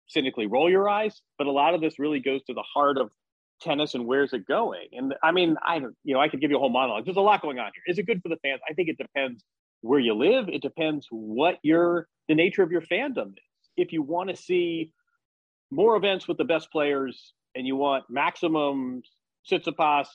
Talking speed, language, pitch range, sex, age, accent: 235 wpm, English, 130-175 Hz, male, 40-59, American